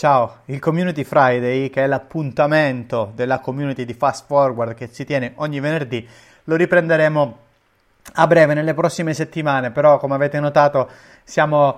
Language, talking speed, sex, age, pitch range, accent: Italian, 150 wpm, male, 30-49, 135-170 Hz, native